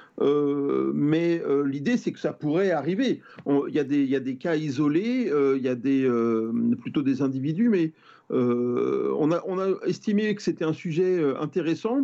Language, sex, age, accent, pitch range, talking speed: French, male, 40-59, French, 145-200 Hz, 190 wpm